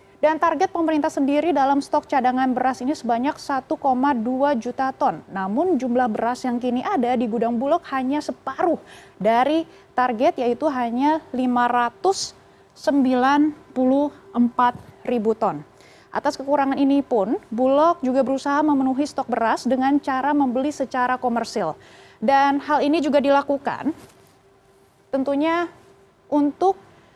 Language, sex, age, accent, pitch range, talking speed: Indonesian, female, 20-39, native, 255-310 Hz, 115 wpm